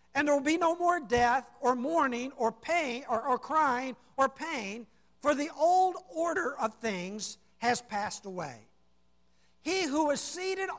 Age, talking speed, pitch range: 50-69, 160 wpm, 235-315 Hz